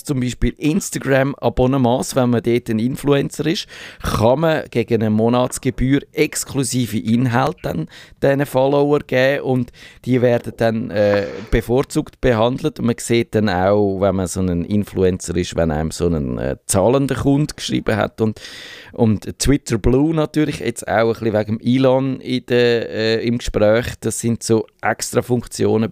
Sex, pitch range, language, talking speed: male, 100-125 Hz, German, 155 wpm